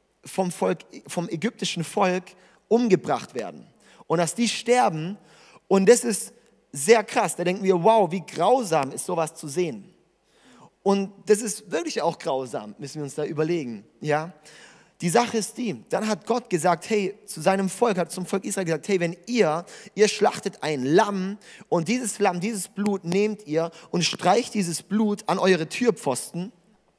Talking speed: 170 wpm